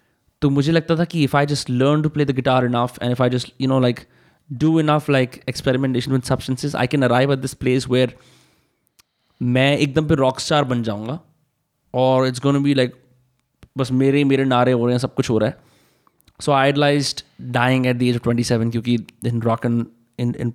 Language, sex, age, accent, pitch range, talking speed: Hindi, male, 20-39, native, 125-145 Hz, 210 wpm